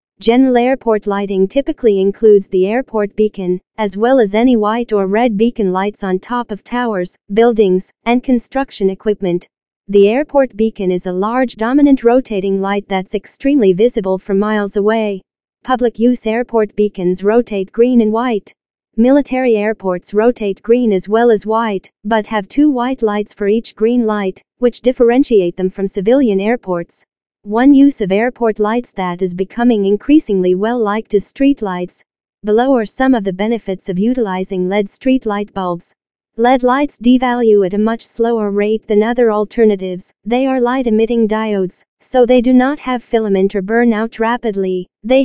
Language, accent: English, American